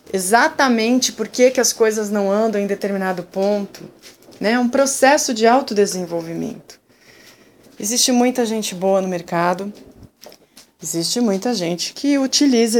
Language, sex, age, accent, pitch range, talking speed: Portuguese, female, 20-39, Brazilian, 175-225 Hz, 120 wpm